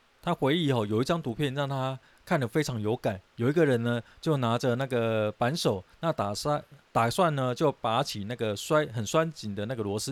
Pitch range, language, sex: 110-155 Hz, Chinese, male